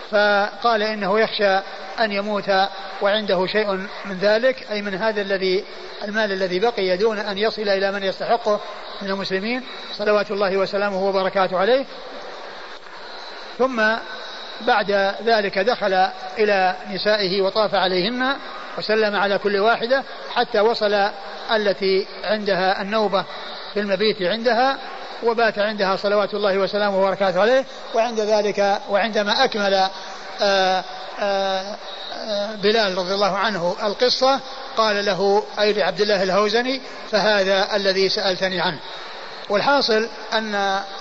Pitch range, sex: 190-215 Hz, male